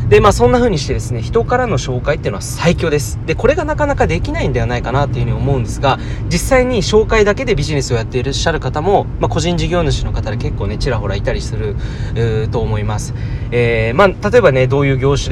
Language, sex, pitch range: Japanese, male, 110-135 Hz